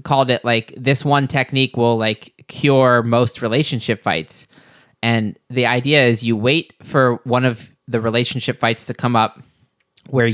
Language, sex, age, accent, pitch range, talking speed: English, male, 20-39, American, 115-135 Hz, 165 wpm